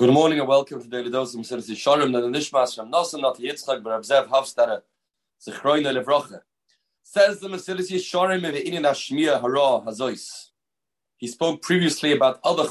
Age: 30-49